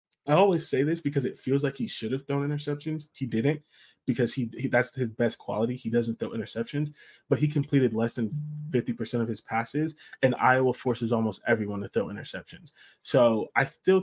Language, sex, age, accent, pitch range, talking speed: English, male, 20-39, American, 115-135 Hz, 195 wpm